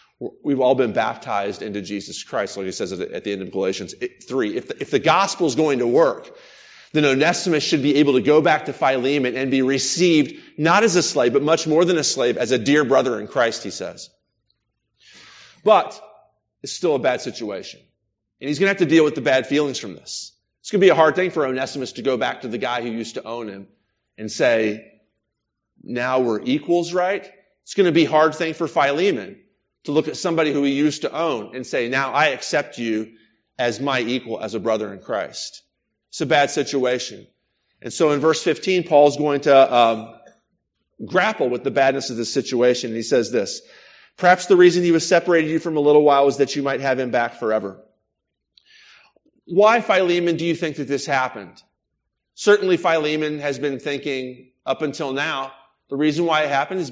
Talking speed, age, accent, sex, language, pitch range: 205 wpm, 30-49, American, male, English, 125-165 Hz